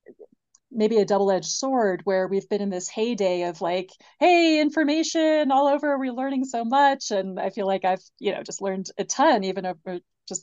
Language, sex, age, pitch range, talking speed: English, female, 30-49, 185-230 Hz, 200 wpm